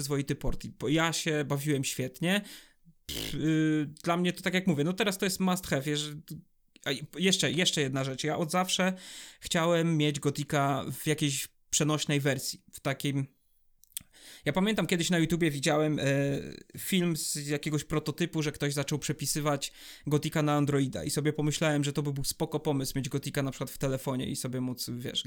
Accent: native